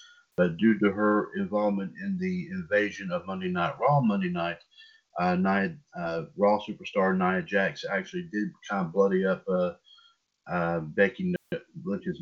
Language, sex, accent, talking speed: English, male, American, 150 wpm